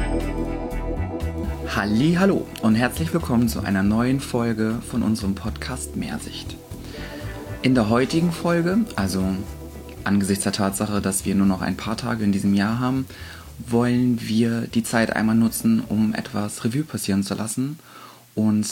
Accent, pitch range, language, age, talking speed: German, 100-125 Hz, German, 30-49, 140 wpm